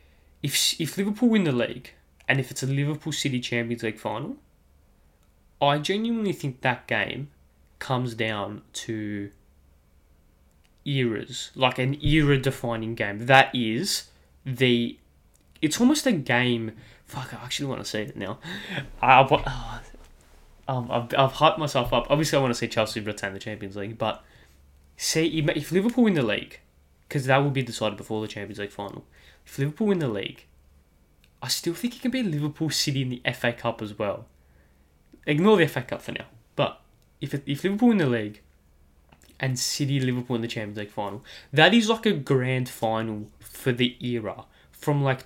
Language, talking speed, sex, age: English, 170 wpm, male, 10-29